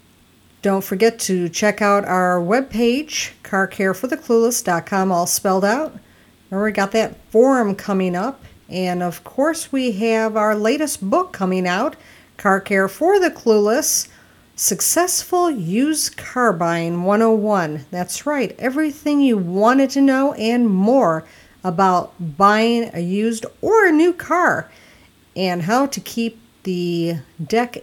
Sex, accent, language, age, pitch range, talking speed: female, American, English, 50-69, 180-240 Hz, 130 wpm